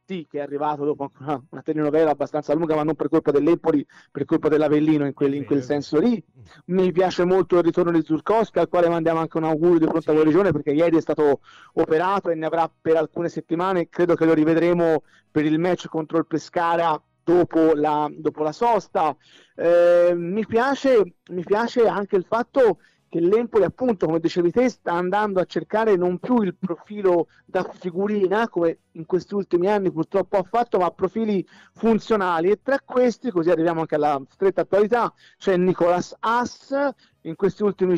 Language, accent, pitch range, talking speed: Italian, native, 160-190 Hz, 180 wpm